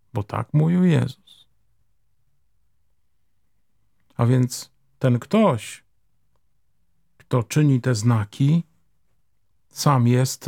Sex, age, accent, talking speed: male, 50-69, native, 80 wpm